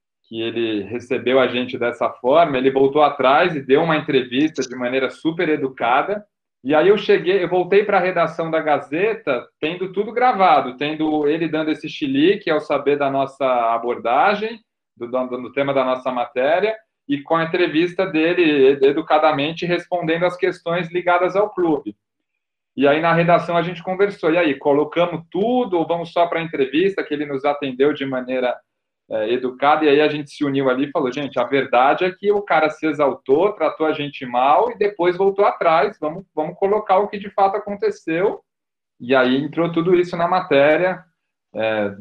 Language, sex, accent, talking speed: Portuguese, male, Brazilian, 185 wpm